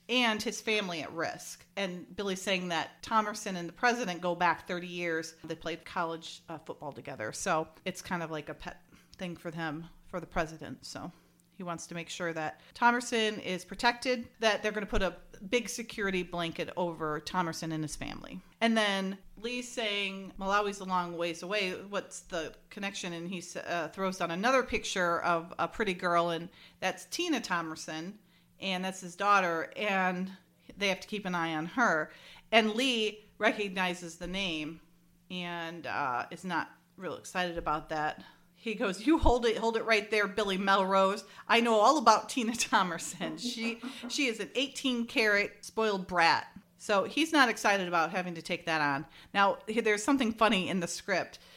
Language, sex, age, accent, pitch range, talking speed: English, female, 40-59, American, 170-215 Hz, 180 wpm